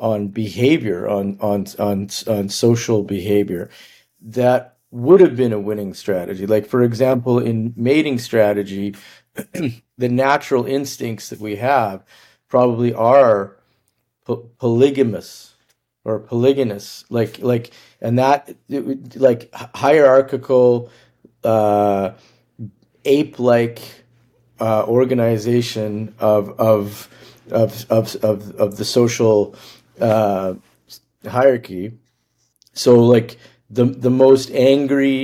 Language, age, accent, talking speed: English, 40-59, American, 105 wpm